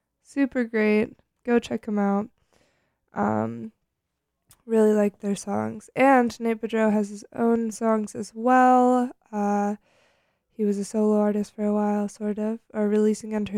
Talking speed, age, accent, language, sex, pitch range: 150 wpm, 20-39, American, English, female, 205-230 Hz